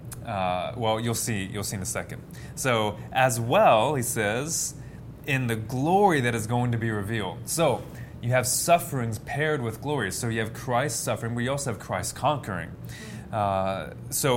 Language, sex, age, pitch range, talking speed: English, male, 20-39, 100-135 Hz, 175 wpm